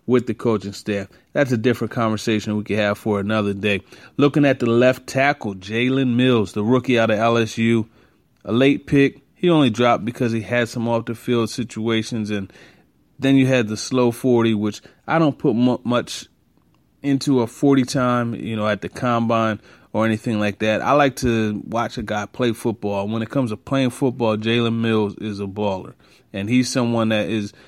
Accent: American